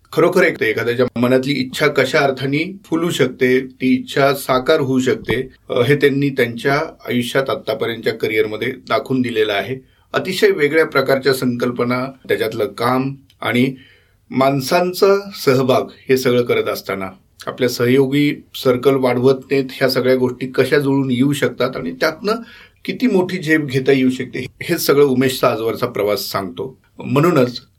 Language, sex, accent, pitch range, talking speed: Marathi, male, native, 125-150 Hz, 140 wpm